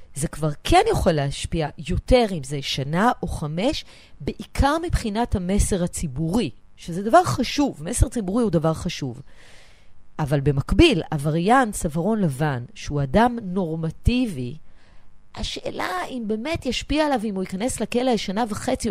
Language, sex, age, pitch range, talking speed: Hebrew, female, 40-59, 160-245 Hz, 135 wpm